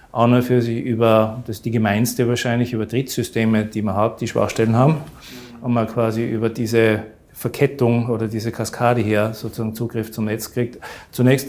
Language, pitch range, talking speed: German, 110-120 Hz, 180 wpm